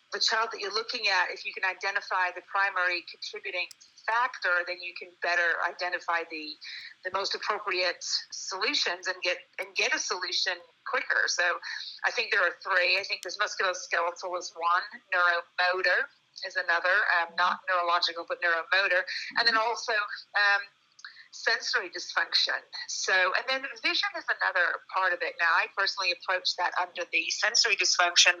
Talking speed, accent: 160 wpm, American